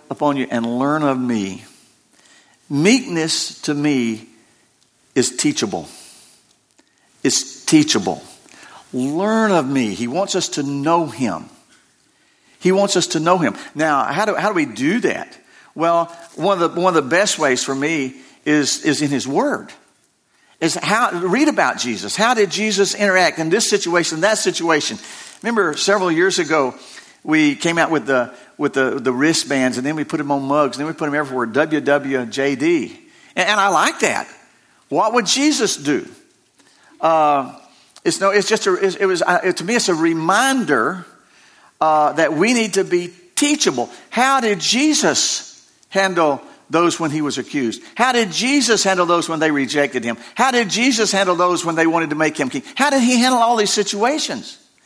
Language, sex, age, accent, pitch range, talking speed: English, male, 50-69, American, 150-240 Hz, 180 wpm